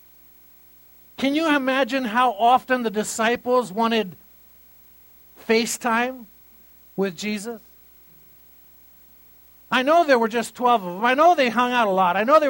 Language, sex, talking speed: English, male, 140 wpm